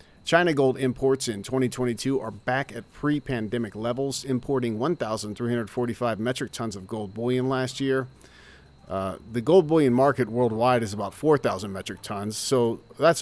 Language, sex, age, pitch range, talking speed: English, male, 40-59, 115-140 Hz, 145 wpm